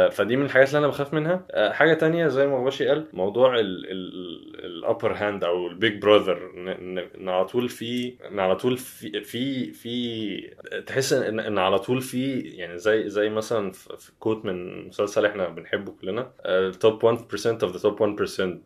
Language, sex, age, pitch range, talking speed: Arabic, male, 20-39, 100-130 Hz, 165 wpm